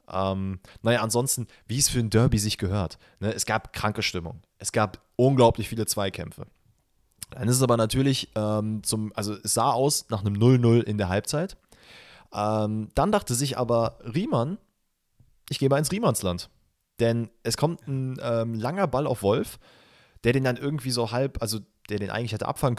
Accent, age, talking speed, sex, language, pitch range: German, 20-39, 180 wpm, male, German, 105-140 Hz